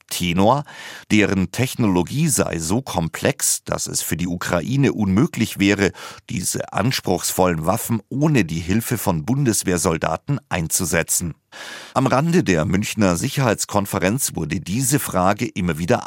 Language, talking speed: German, 120 wpm